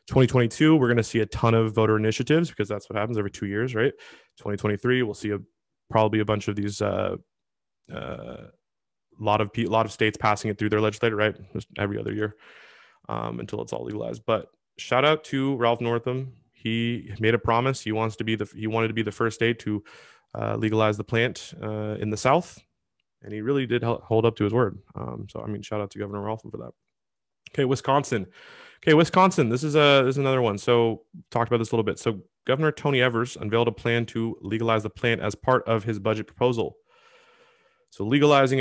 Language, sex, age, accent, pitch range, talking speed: English, male, 20-39, American, 105-125 Hz, 215 wpm